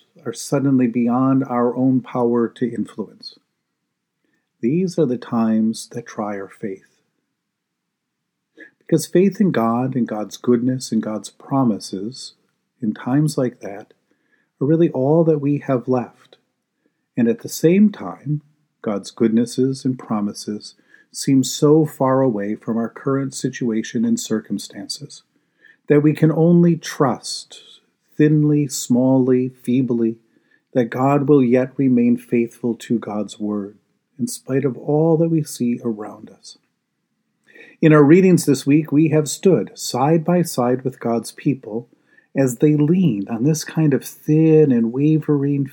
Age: 50-69